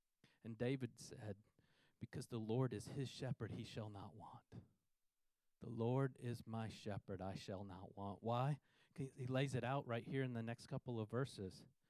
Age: 40-59